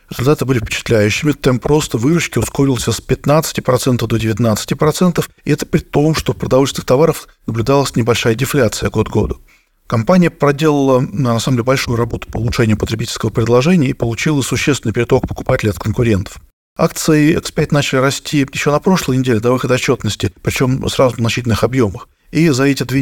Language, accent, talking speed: Russian, native, 160 wpm